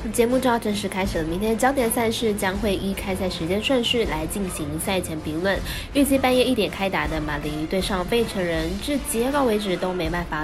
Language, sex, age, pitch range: Chinese, female, 20-39, 175-235 Hz